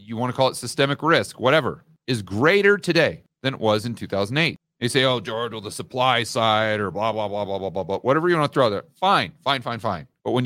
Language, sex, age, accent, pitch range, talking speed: English, male, 40-59, American, 115-165 Hz, 250 wpm